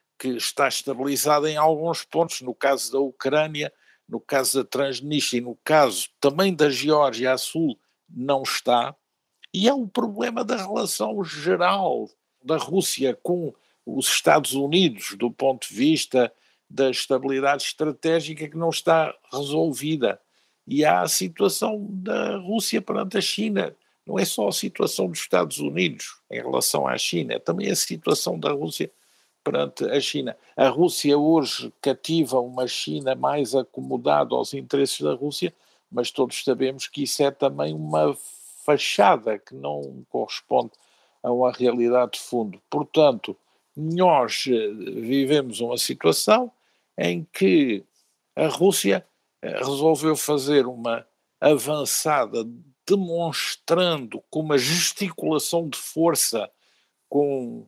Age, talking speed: 50-69, 130 wpm